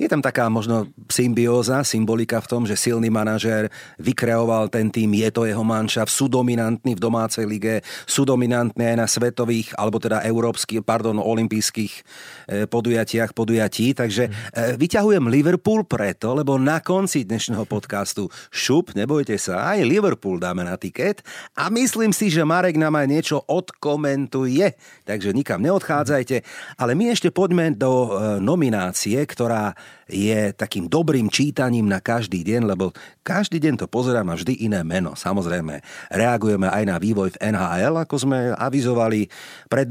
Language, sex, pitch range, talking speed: Slovak, male, 110-140 Hz, 145 wpm